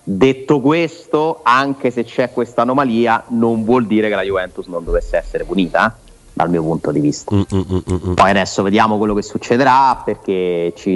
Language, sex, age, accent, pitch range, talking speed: Italian, male, 30-49, native, 100-115 Hz, 170 wpm